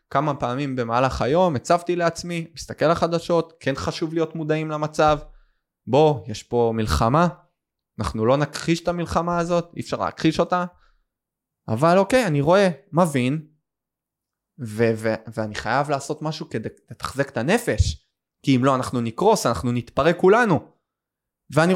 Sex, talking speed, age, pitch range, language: male, 145 wpm, 20-39, 115-155 Hz, Hebrew